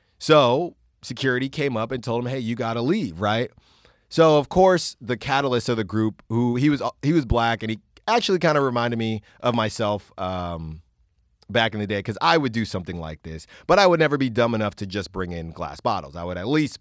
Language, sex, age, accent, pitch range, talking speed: English, male, 30-49, American, 105-170 Hz, 230 wpm